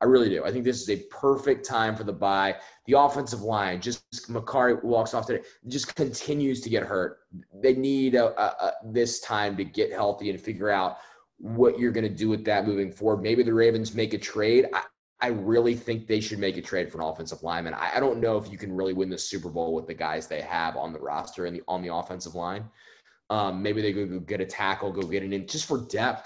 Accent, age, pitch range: American, 20-39, 90-115 Hz